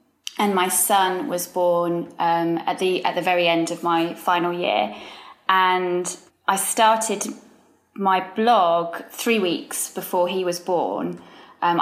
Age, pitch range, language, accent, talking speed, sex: 20-39, 170-200 Hz, English, British, 140 wpm, female